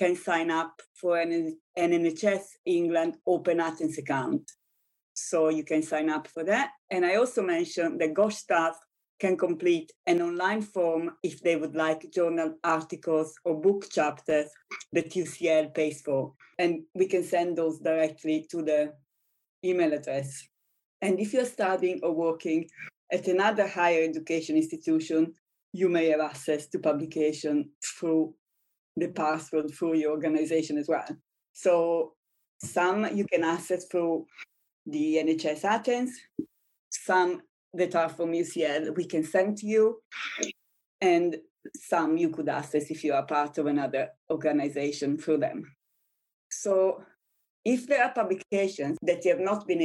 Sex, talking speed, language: female, 145 wpm, English